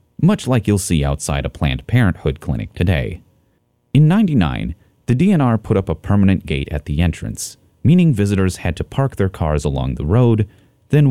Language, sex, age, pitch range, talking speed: English, male, 30-49, 80-120 Hz, 180 wpm